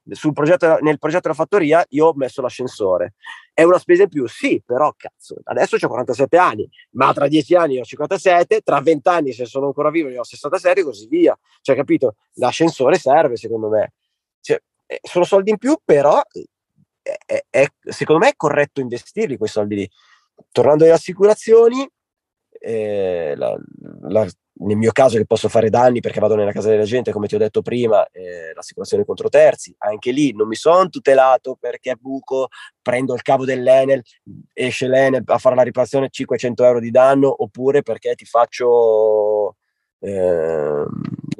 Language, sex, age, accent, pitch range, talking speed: Italian, male, 30-49, native, 125-210 Hz, 170 wpm